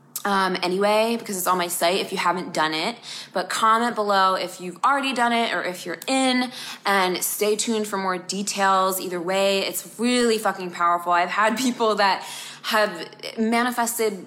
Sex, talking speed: female, 175 wpm